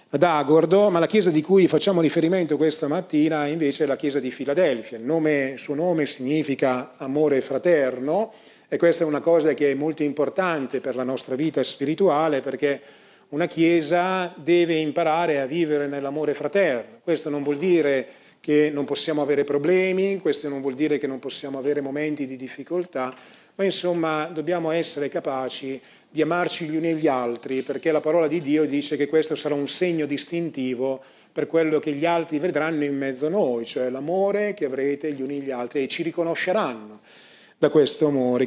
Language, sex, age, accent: Italian, male, 40-59, native